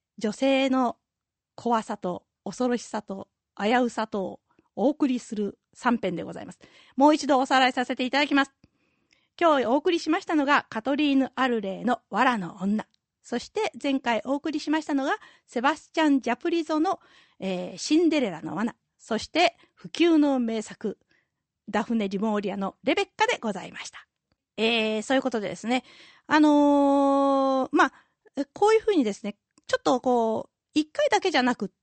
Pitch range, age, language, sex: 225-310 Hz, 40-59, Japanese, female